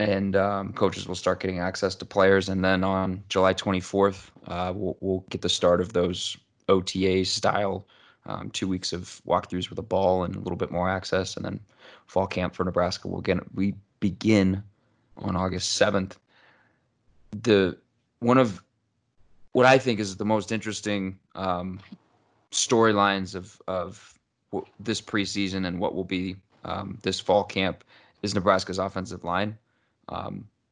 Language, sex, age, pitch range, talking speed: English, male, 20-39, 95-105 Hz, 160 wpm